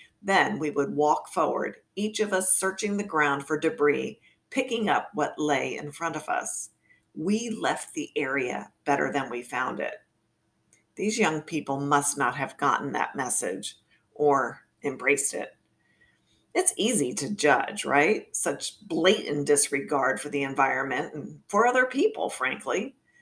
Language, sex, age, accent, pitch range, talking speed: English, female, 50-69, American, 145-190 Hz, 150 wpm